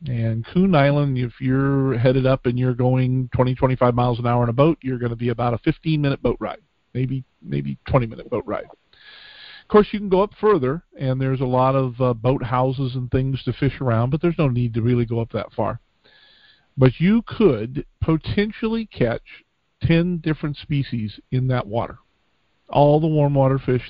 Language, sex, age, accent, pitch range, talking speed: English, male, 50-69, American, 120-140 Hz, 195 wpm